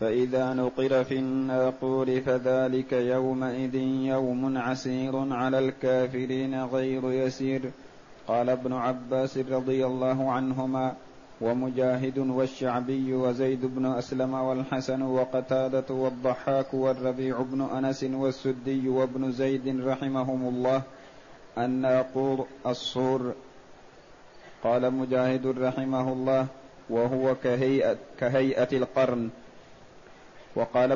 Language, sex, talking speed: Arabic, male, 85 wpm